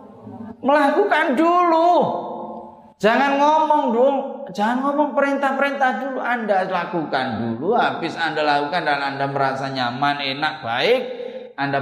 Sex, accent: male, native